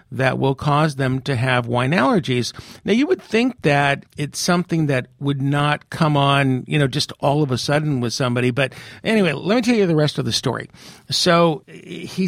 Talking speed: 205 wpm